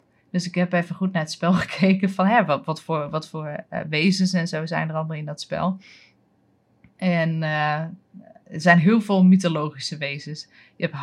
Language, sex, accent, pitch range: Dutch, female, Dutch, 155-185 Hz